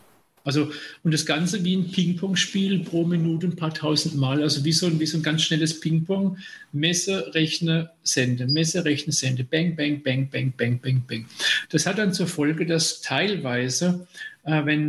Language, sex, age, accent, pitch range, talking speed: German, male, 50-69, German, 140-165 Hz, 175 wpm